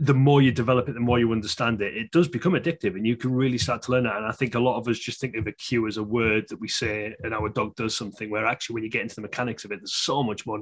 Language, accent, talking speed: English, British, 335 wpm